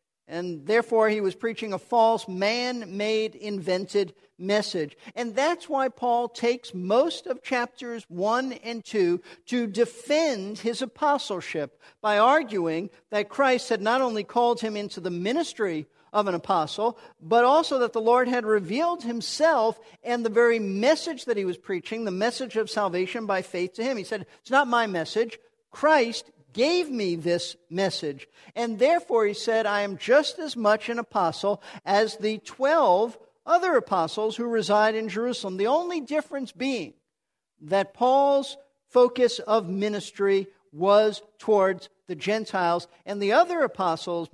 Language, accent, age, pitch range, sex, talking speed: English, American, 50-69, 190-245 Hz, male, 155 wpm